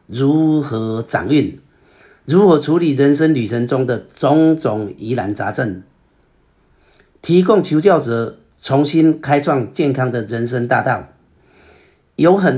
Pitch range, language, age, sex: 115-155 Hz, Chinese, 50-69, male